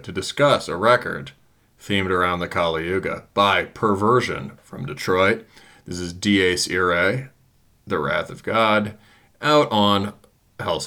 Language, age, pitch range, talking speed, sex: English, 30-49, 90-110 Hz, 135 wpm, male